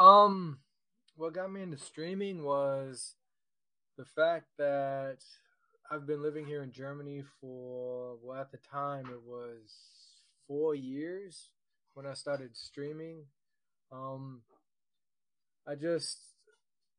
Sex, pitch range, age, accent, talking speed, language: male, 130-155 Hz, 20-39, American, 115 wpm, English